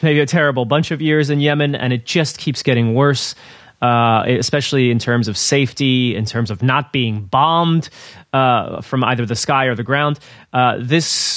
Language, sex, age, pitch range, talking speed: English, male, 30-49, 125-160 Hz, 190 wpm